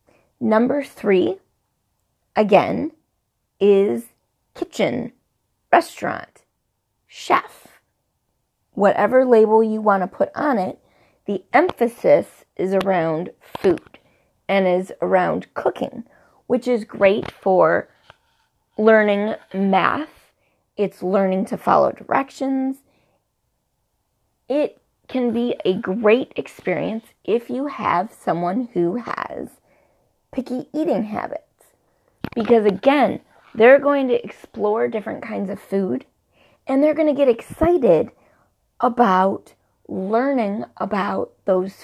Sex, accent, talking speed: female, American, 100 wpm